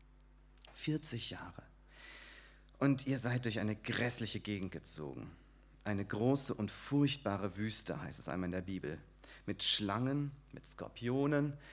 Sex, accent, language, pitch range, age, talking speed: male, German, German, 105-140 Hz, 30-49, 130 wpm